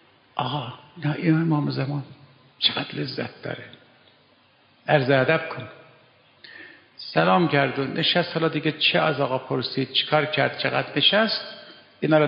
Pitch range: 130-175 Hz